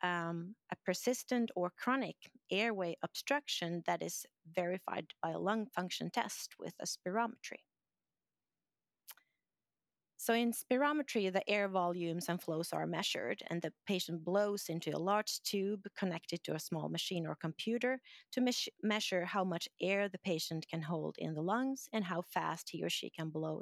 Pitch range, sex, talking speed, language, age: 170-220 Hz, female, 160 wpm, English, 30-49